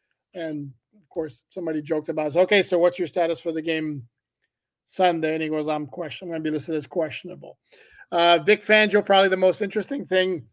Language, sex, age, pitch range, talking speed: English, male, 50-69, 155-180 Hz, 210 wpm